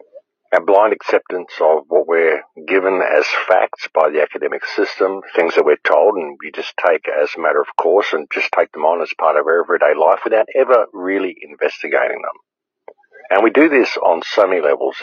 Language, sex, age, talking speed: English, male, 50-69, 200 wpm